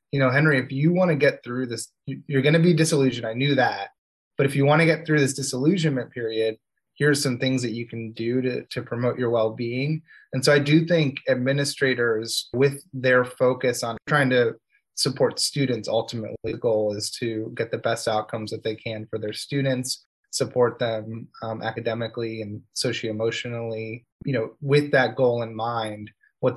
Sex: male